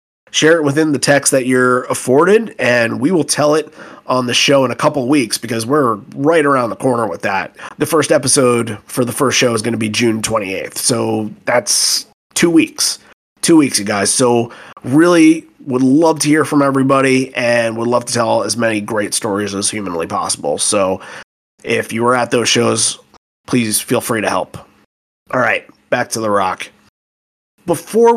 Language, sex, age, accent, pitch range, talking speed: English, male, 30-49, American, 115-175 Hz, 190 wpm